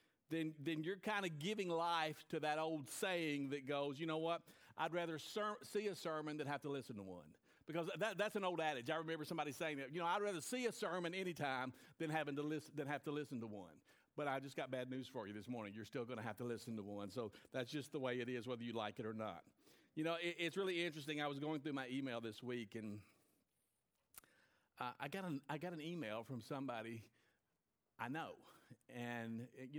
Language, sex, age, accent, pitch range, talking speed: English, male, 50-69, American, 125-170 Hz, 235 wpm